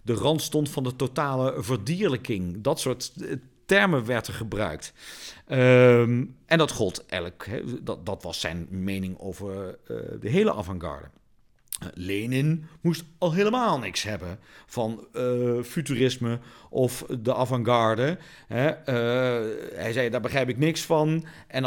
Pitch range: 120-165 Hz